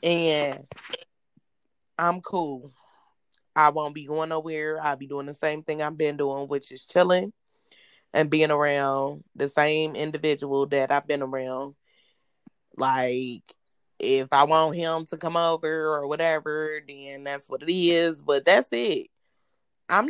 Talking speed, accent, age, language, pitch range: 145 wpm, American, 20-39, English, 145-185 Hz